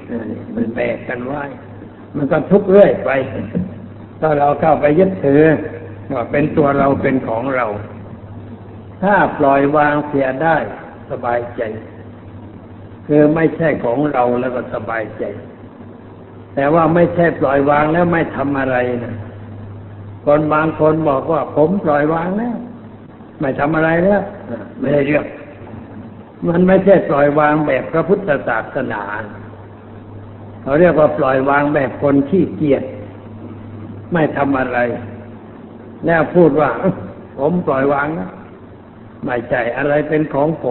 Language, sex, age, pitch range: Thai, male, 60-79, 110-150 Hz